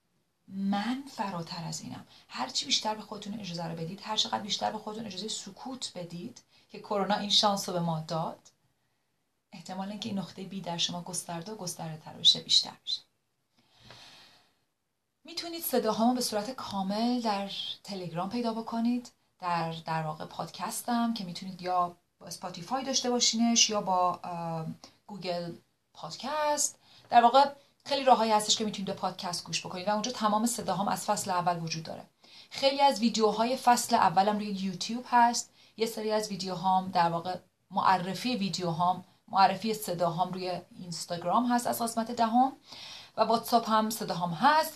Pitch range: 180-230 Hz